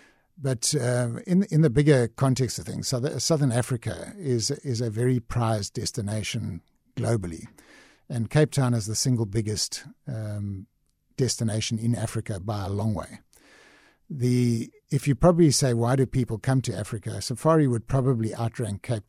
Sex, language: male, English